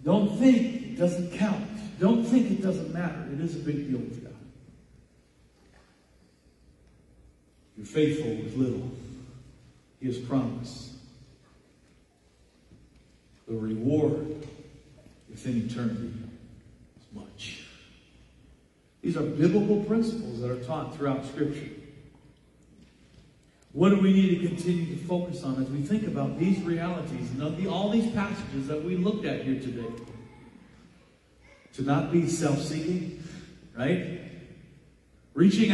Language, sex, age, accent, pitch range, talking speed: English, male, 40-59, American, 120-175 Hz, 120 wpm